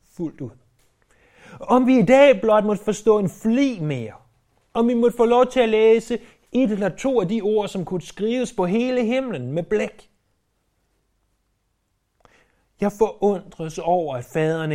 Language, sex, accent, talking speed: Danish, male, native, 160 wpm